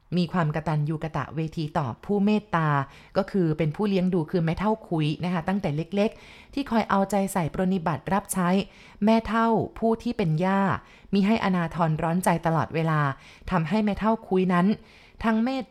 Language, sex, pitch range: Thai, female, 160-205 Hz